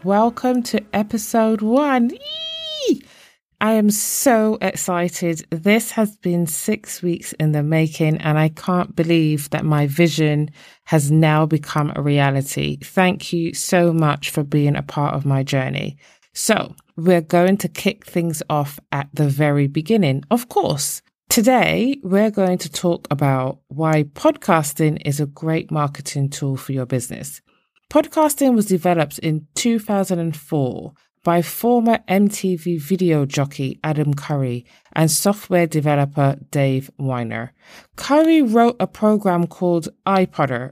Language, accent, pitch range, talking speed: English, British, 145-195 Hz, 135 wpm